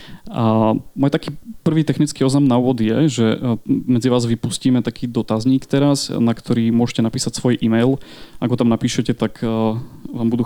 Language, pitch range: Slovak, 115-135 Hz